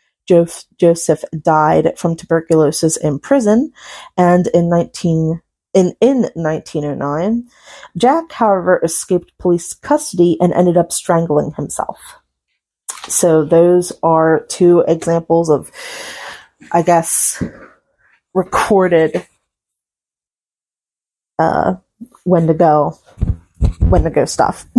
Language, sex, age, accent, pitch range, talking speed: English, female, 30-49, American, 165-195 Hz, 100 wpm